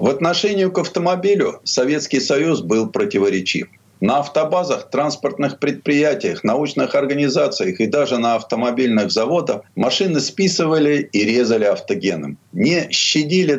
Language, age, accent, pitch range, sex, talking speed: Russian, 50-69, native, 105-155 Hz, male, 115 wpm